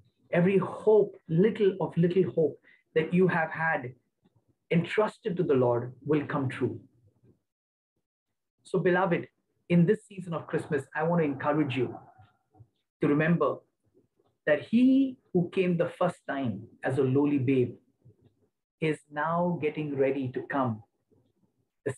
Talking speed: 135 wpm